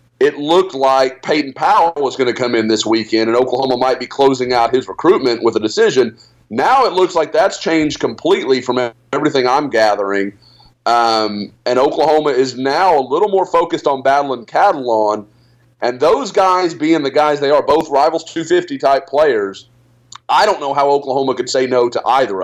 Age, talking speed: 30-49, 180 wpm